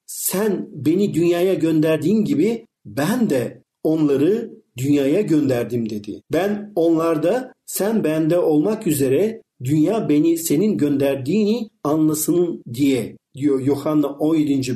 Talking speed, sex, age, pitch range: 105 wpm, male, 50-69, 145-200 Hz